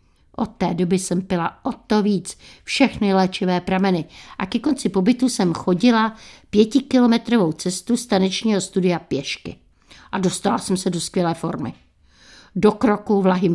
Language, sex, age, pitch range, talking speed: Czech, female, 60-79, 185-225 Hz, 140 wpm